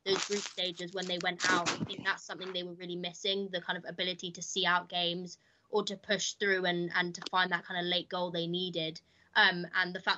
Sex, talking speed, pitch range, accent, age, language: female, 250 wpm, 170-190 Hz, British, 20-39, English